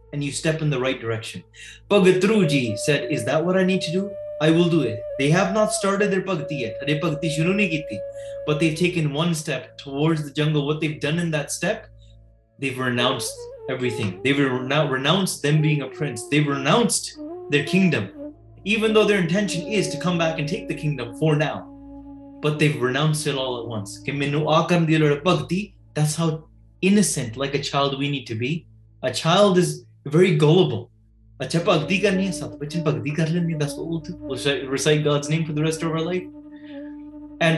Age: 20-39